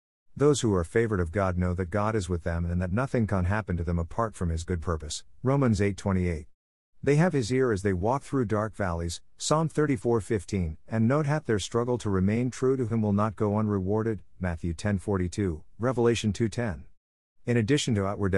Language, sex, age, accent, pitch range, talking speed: English, male, 50-69, American, 90-115 Hz, 195 wpm